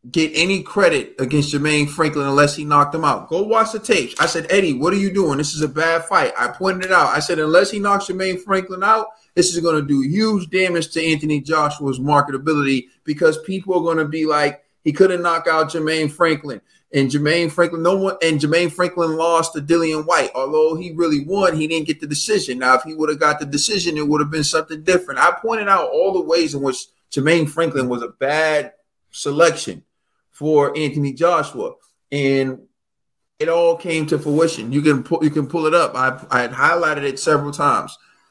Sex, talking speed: male, 205 wpm